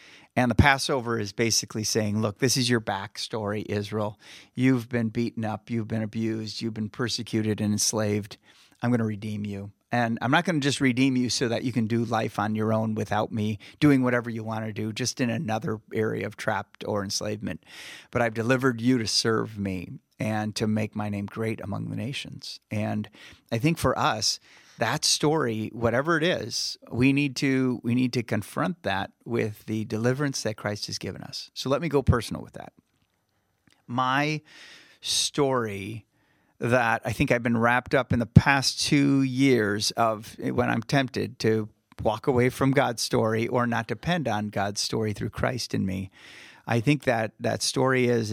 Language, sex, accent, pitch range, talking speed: English, male, American, 105-125 Hz, 185 wpm